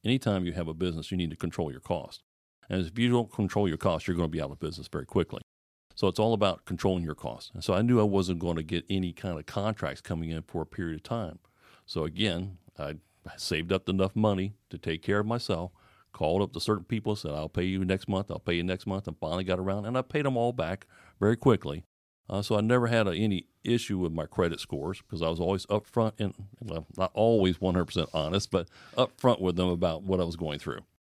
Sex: male